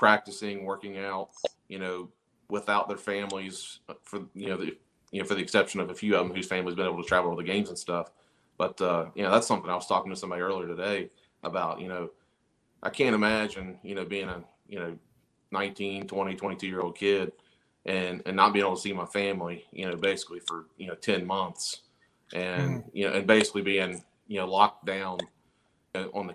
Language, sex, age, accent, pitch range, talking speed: English, male, 30-49, American, 90-105 Hz, 210 wpm